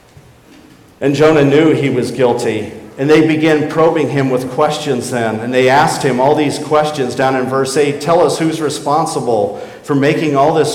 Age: 50-69